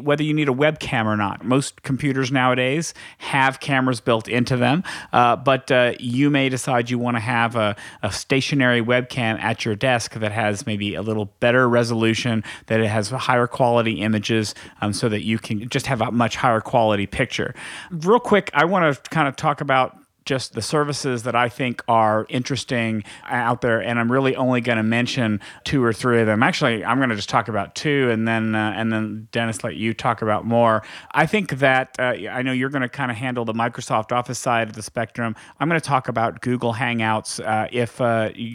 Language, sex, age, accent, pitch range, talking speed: English, male, 40-59, American, 110-130 Hz, 210 wpm